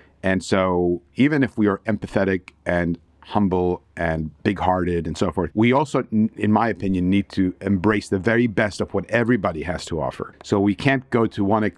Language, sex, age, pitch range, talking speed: English, male, 50-69, 90-110 Hz, 190 wpm